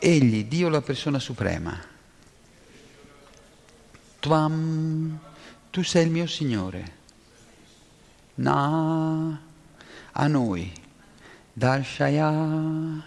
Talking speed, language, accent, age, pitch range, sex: 65 wpm, Italian, native, 50-69, 130-160 Hz, male